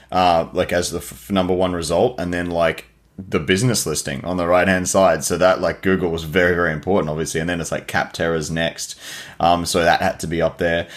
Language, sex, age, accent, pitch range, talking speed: English, male, 20-39, Australian, 85-110 Hz, 230 wpm